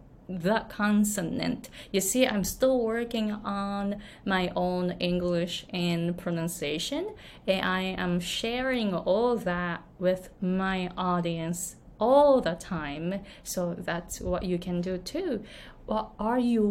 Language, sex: Japanese, female